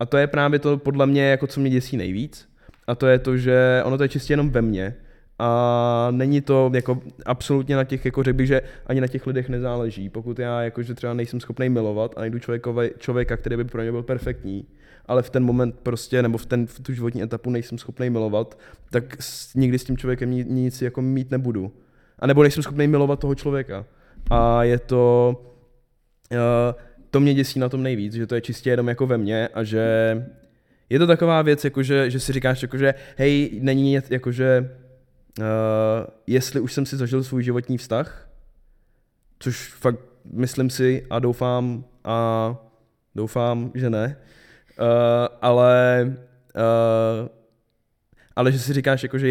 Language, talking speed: Czech, 180 wpm